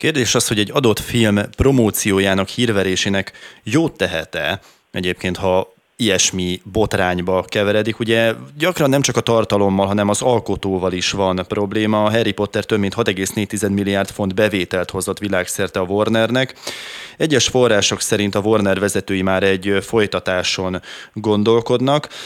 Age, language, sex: 20-39, Hungarian, male